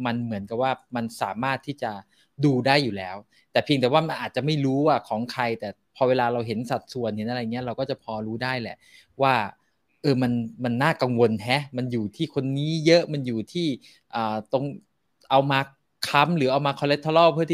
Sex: male